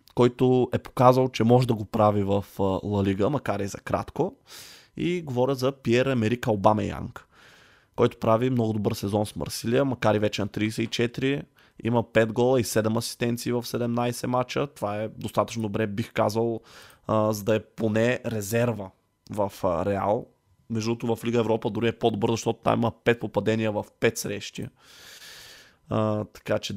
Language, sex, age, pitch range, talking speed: Bulgarian, male, 20-39, 105-120 Hz, 165 wpm